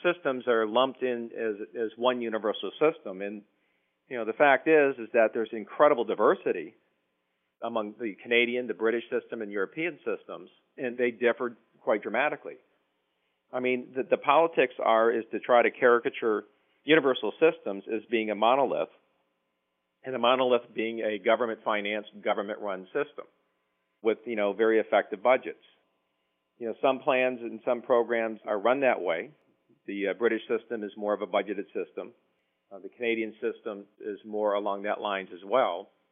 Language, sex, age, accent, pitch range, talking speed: English, male, 40-59, American, 100-125 Hz, 160 wpm